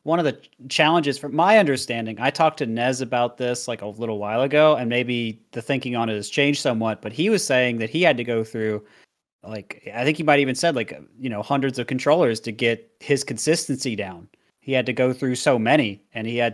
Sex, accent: male, American